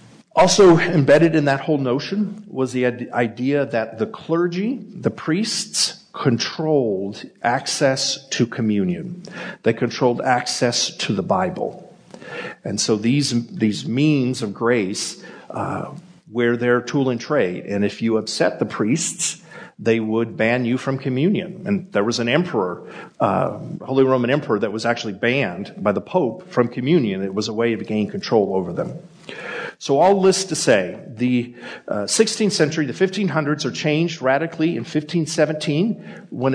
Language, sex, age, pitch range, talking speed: English, male, 50-69, 120-170 Hz, 150 wpm